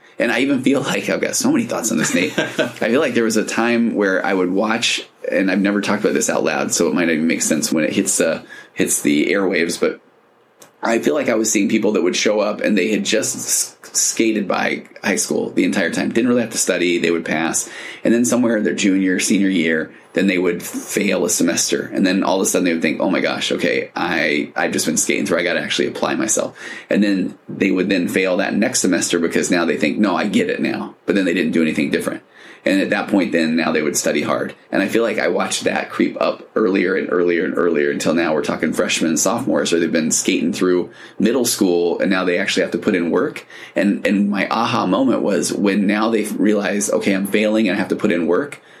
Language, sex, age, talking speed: English, male, 20-39, 255 wpm